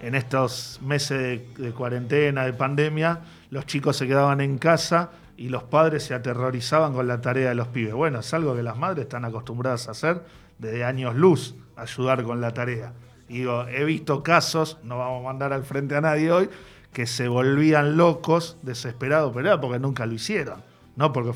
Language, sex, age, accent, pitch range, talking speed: Spanish, male, 40-59, Argentinian, 125-150 Hz, 190 wpm